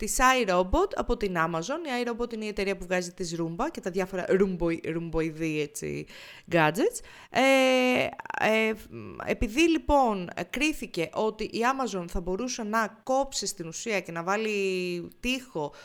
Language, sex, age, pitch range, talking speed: Greek, female, 30-49, 170-245 Hz, 150 wpm